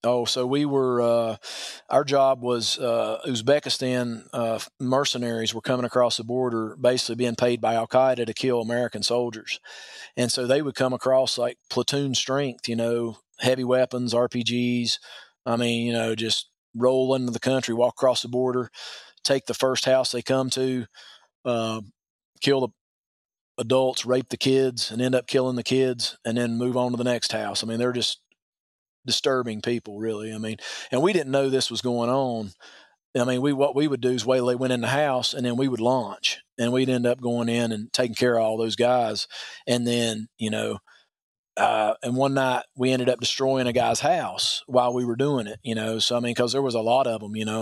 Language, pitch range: English, 115-130 Hz